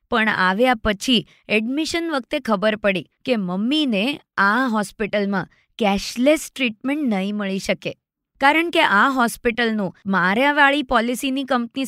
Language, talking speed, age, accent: Gujarati, 115 wpm, 20-39, native